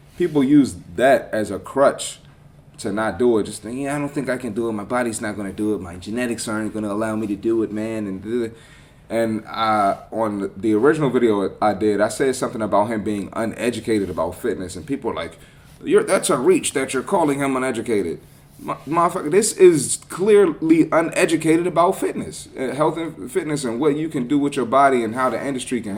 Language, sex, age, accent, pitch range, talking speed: English, male, 30-49, American, 110-145 Hz, 210 wpm